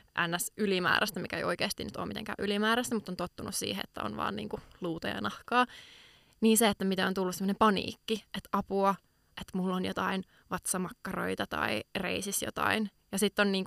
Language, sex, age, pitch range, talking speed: Finnish, female, 20-39, 185-210 Hz, 185 wpm